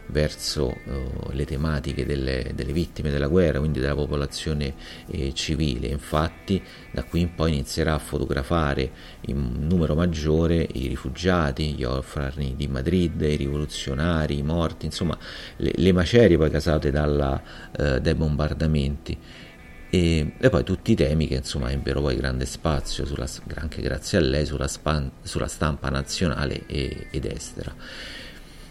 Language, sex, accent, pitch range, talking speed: Italian, male, native, 70-85 Hz, 135 wpm